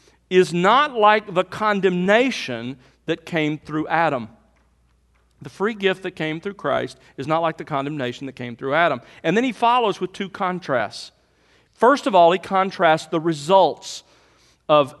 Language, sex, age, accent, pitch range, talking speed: English, male, 40-59, American, 145-200 Hz, 160 wpm